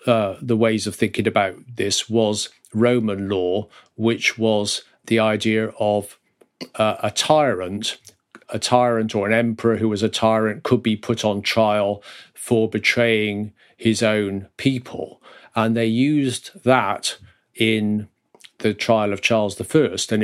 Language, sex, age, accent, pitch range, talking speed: English, male, 40-59, British, 105-120 Hz, 145 wpm